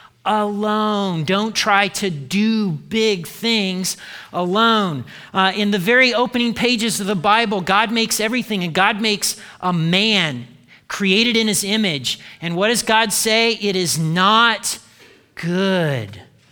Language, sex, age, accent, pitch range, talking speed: English, male, 40-59, American, 165-215 Hz, 140 wpm